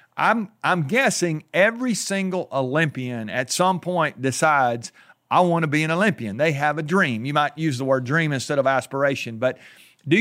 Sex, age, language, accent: male, 50-69, English, American